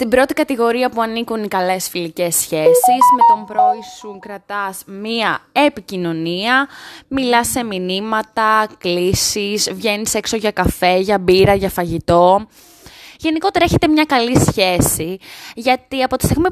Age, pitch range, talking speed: 20-39, 185-265 Hz, 135 wpm